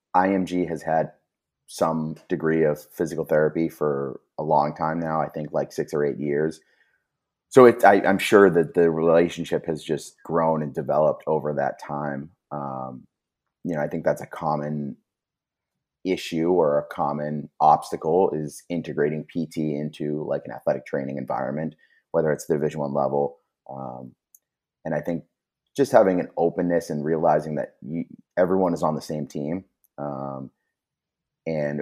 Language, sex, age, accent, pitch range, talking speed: English, male, 30-49, American, 70-80 Hz, 160 wpm